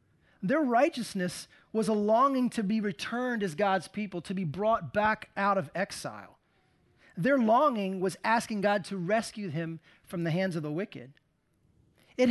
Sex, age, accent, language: male, 30-49, American, English